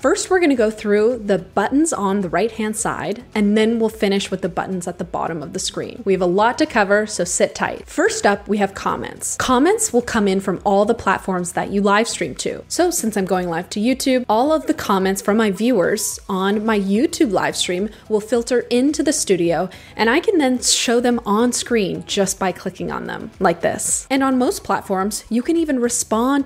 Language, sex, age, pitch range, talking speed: English, female, 20-39, 190-250 Hz, 220 wpm